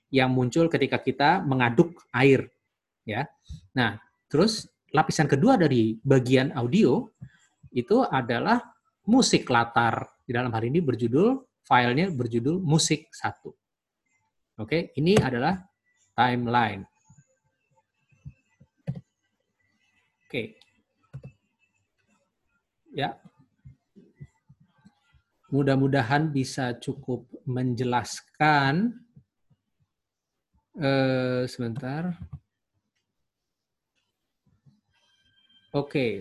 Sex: male